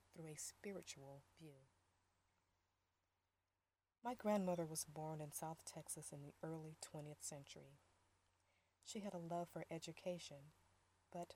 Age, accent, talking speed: 40-59, American, 120 wpm